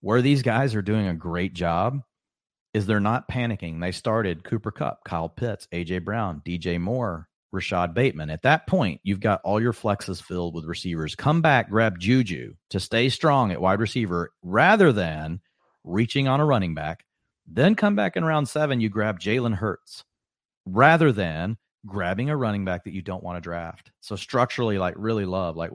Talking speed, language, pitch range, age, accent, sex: 185 wpm, English, 90-120 Hz, 40-59, American, male